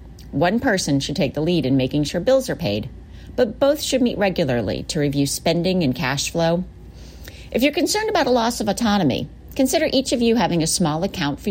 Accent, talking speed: American, 210 wpm